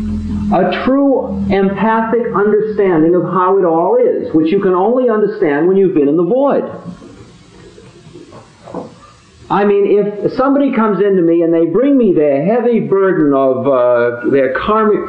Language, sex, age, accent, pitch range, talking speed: English, male, 50-69, American, 160-220 Hz, 150 wpm